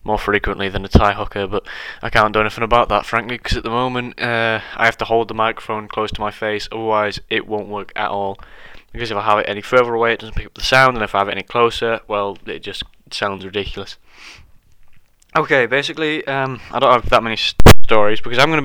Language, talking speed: English, 235 wpm